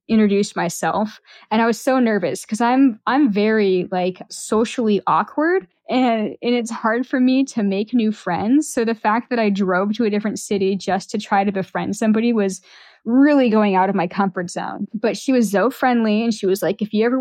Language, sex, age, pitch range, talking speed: English, female, 10-29, 190-230 Hz, 210 wpm